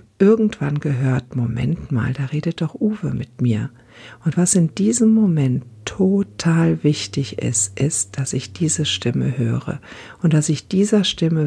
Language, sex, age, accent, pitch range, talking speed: German, female, 60-79, German, 115-170 Hz, 150 wpm